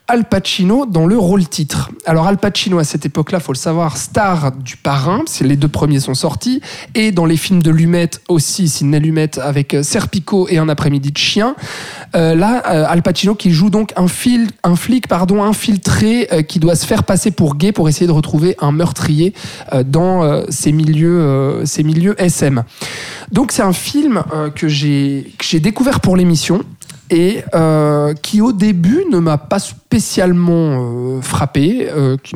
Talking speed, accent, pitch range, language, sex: 190 wpm, French, 150-195 Hz, French, male